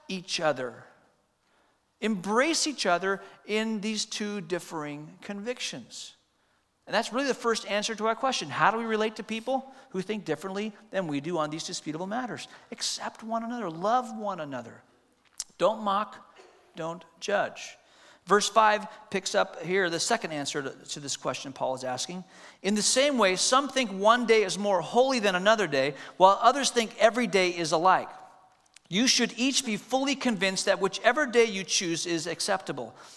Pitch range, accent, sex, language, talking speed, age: 170-230 Hz, American, male, English, 170 wpm, 40-59